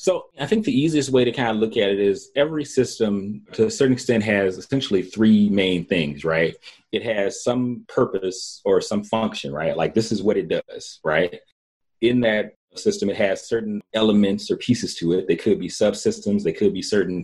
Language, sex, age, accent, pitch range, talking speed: English, male, 30-49, American, 100-150 Hz, 205 wpm